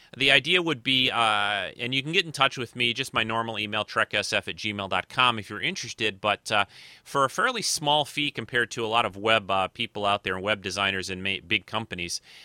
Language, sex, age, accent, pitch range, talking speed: English, male, 30-49, American, 105-125 Hz, 225 wpm